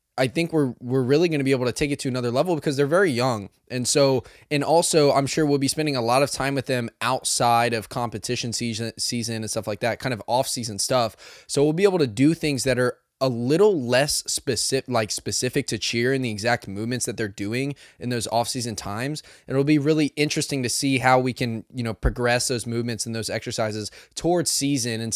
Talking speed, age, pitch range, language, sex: 230 wpm, 10-29, 110-135 Hz, English, male